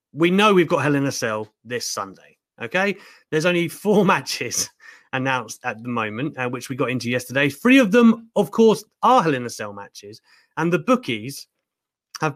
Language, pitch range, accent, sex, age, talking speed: English, 120-195 Hz, British, male, 30-49, 195 wpm